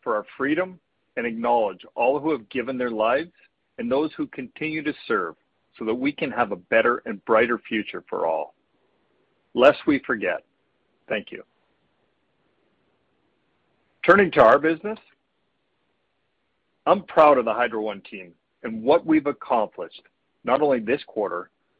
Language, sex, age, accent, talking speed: English, male, 50-69, American, 145 wpm